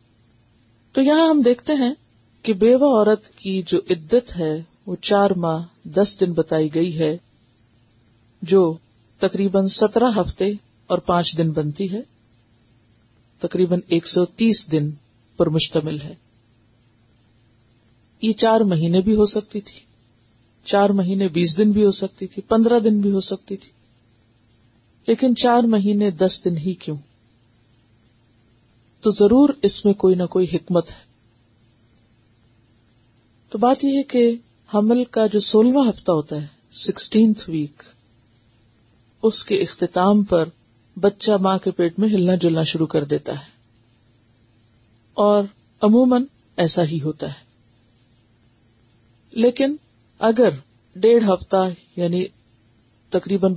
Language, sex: Urdu, female